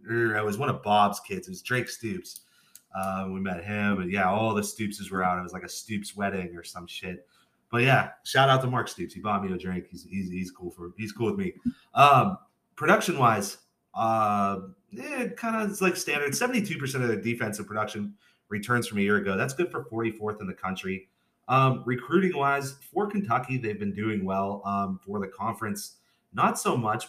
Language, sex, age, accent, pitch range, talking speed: English, male, 30-49, American, 100-140 Hz, 210 wpm